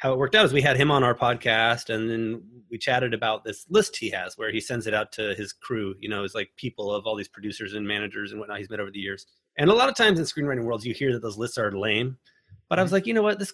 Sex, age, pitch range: male, 30-49, 110-140 Hz